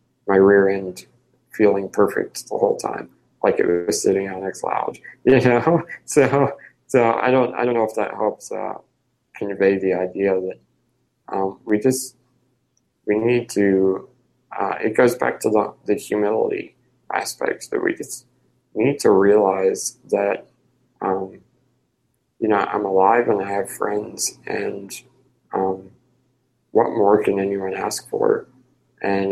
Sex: male